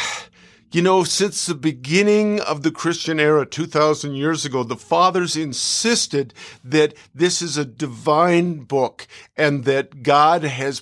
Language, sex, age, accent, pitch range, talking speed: English, male, 50-69, American, 125-160 Hz, 140 wpm